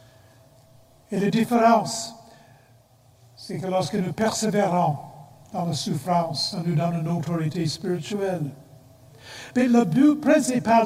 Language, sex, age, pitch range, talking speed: French, male, 60-79, 150-220 Hz, 115 wpm